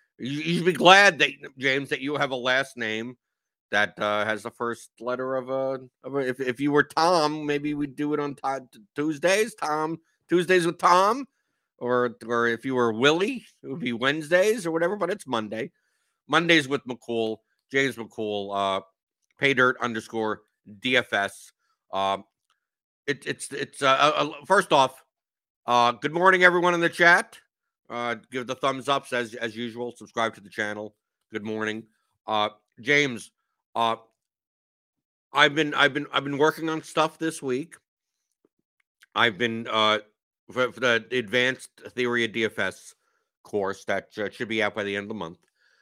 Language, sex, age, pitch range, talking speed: English, male, 50-69, 115-150 Hz, 160 wpm